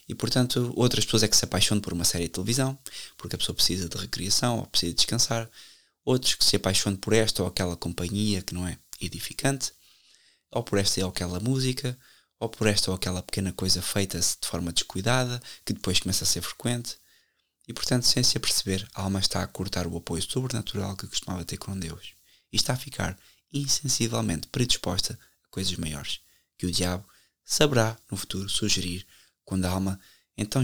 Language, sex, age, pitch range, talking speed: Portuguese, male, 20-39, 90-115 Hz, 185 wpm